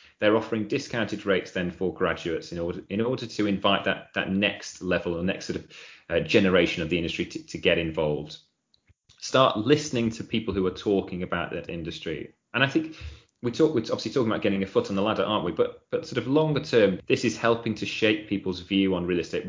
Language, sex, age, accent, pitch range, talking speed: English, male, 30-49, British, 90-120 Hz, 225 wpm